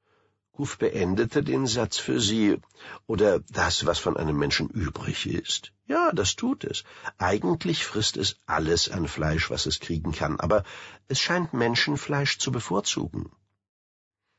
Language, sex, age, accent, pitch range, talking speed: German, male, 60-79, German, 90-105 Hz, 140 wpm